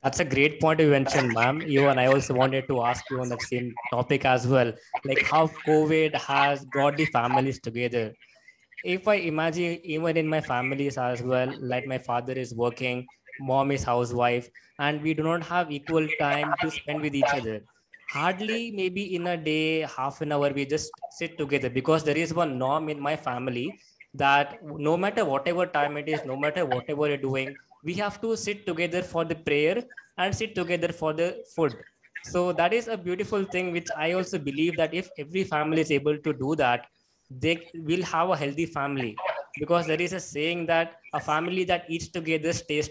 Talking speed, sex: 195 wpm, male